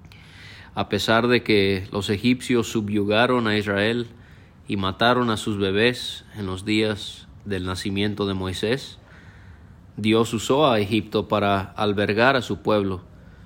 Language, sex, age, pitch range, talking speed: Spanish, male, 30-49, 95-110 Hz, 135 wpm